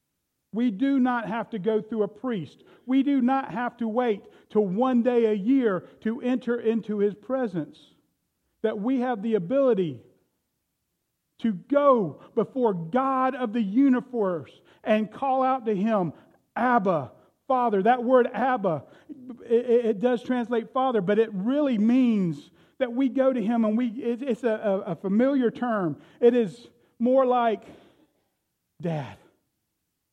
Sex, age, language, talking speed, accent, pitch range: male, 40-59, English, 145 wpm, American, 205-255 Hz